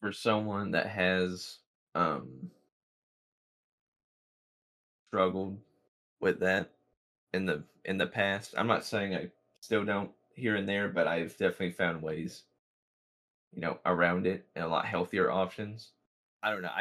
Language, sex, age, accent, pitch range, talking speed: English, male, 20-39, American, 90-105 Hz, 135 wpm